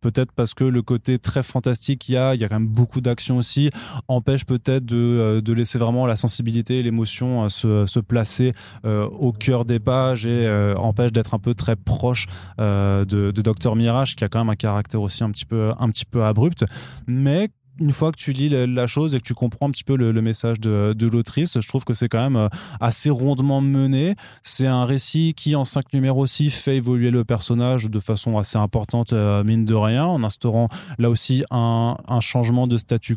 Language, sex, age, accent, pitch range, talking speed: French, male, 20-39, French, 110-130 Hz, 220 wpm